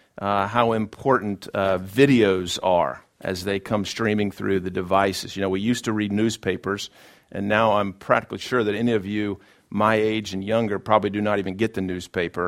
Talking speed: 190 wpm